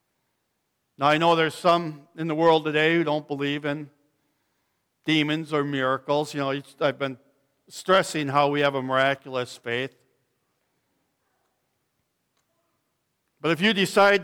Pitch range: 145-185 Hz